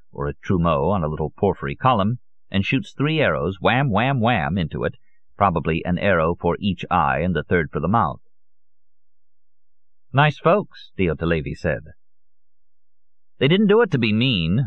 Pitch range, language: 85-105 Hz, English